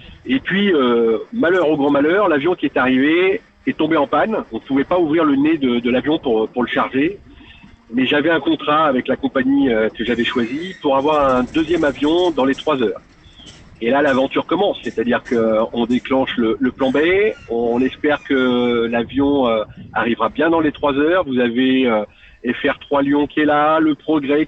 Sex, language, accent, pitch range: male, French, French, 120-165 Hz